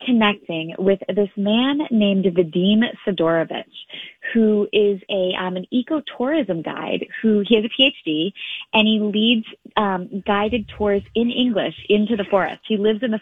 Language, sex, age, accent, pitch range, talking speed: English, female, 20-39, American, 185-225 Hz, 155 wpm